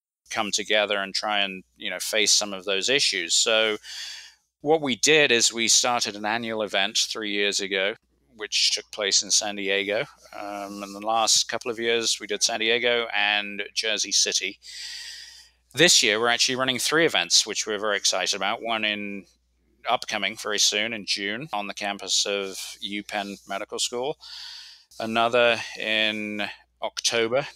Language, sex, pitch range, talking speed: English, male, 100-125 Hz, 160 wpm